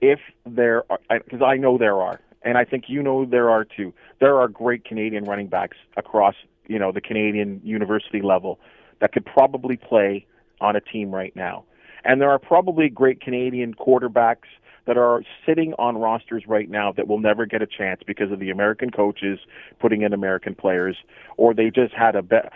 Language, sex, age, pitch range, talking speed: English, male, 40-59, 100-120 Hz, 195 wpm